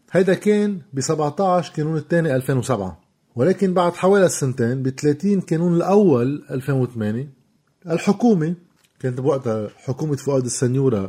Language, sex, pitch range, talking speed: Arabic, male, 120-175 Hz, 120 wpm